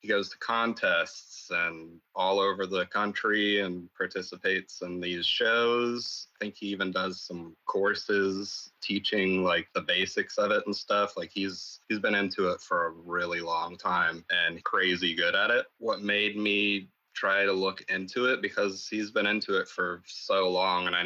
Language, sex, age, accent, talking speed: English, male, 30-49, American, 180 wpm